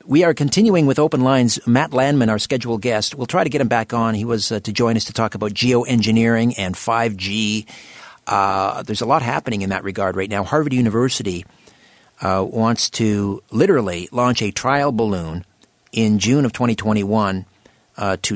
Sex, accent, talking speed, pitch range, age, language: male, American, 175 wpm, 100-125 Hz, 50-69, English